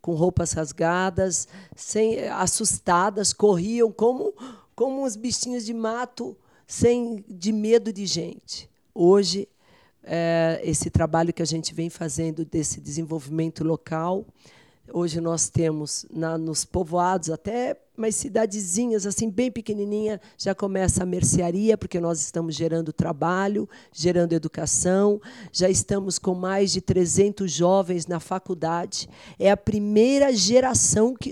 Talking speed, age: 125 wpm, 40-59